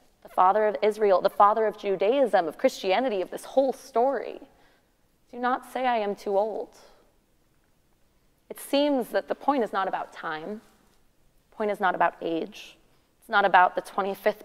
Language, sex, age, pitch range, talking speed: English, female, 20-39, 185-220 Hz, 170 wpm